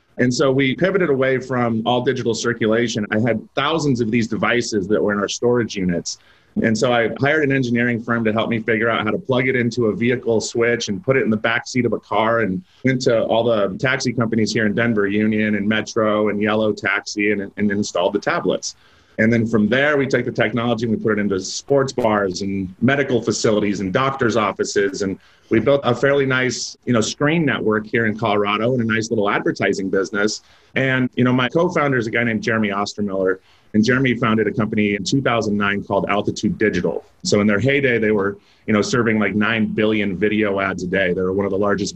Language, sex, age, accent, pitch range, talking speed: English, male, 30-49, American, 105-125 Hz, 225 wpm